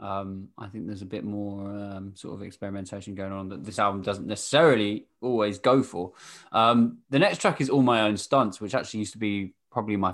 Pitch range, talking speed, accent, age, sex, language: 105-125 Hz, 220 wpm, British, 20-39, male, English